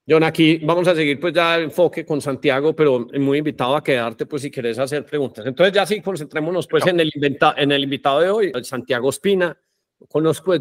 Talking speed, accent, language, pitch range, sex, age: 210 wpm, Colombian, Spanish, 130-160 Hz, male, 40-59